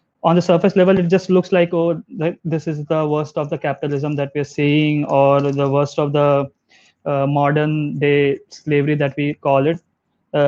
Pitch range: 145-180 Hz